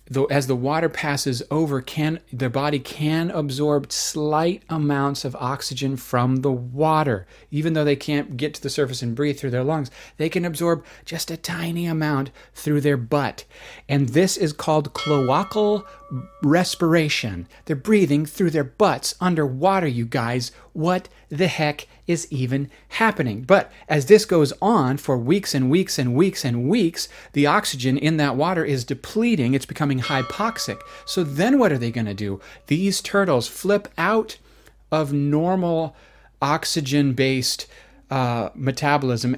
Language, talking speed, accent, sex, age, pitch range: English, 150 wpm, American, male, 40-59, 130-165 Hz